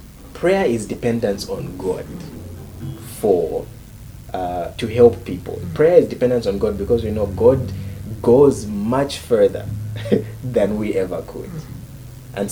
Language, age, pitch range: English, 30-49, 95-125 Hz